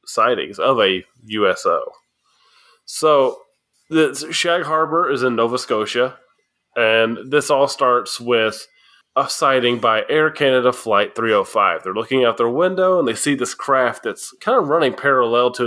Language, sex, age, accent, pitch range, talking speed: English, male, 20-39, American, 120-160 Hz, 155 wpm